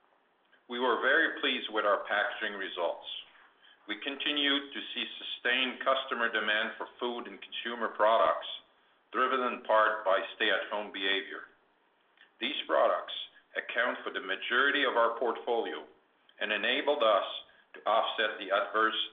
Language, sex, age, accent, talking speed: English, male, 50-69, American, 130 wpm